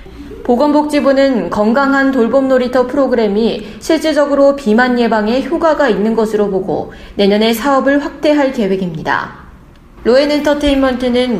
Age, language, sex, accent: 20-39, Korean, female, native